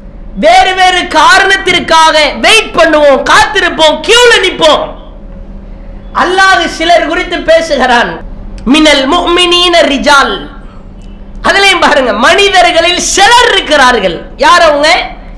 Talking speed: 100 wpm